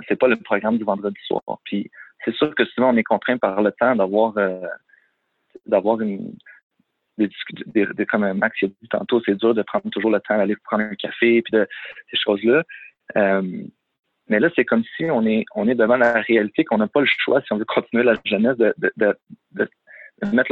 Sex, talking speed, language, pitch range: male, 225 wpm, French, 105-125 Hz